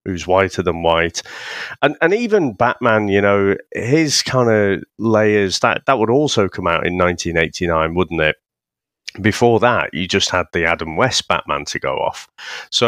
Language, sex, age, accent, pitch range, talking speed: English, male, 30-49, British, 90-120 Hz, 170 wpm